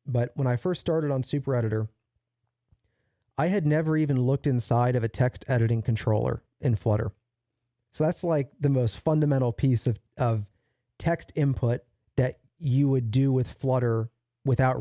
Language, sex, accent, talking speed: English, male, American, 160 wpm